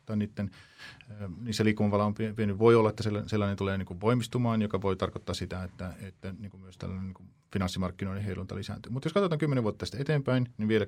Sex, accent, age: male, native, 40-59